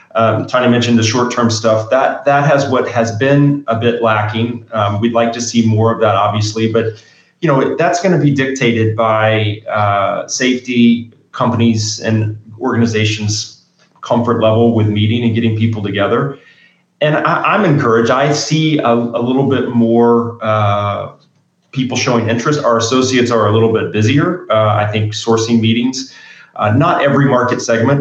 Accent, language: American, English